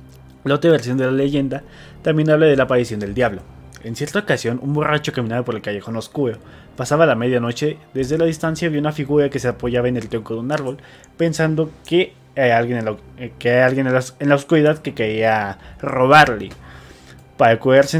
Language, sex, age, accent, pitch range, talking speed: Spanish, male, 20-39, Mexican, 115-145 Hz, 190 wpm